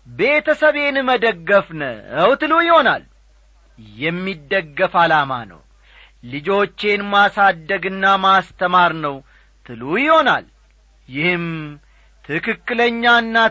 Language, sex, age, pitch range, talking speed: Amharic, male, 40-59, 165-235 Hz, 65 wpm